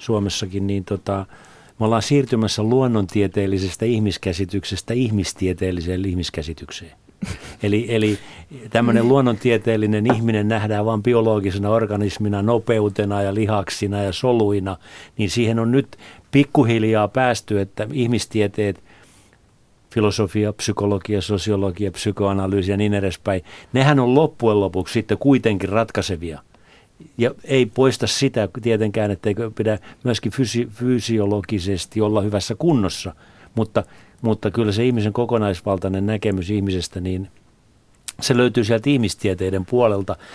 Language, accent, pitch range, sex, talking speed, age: Finnish, native, 100-120 Hz, male, 105 wpm, 50-69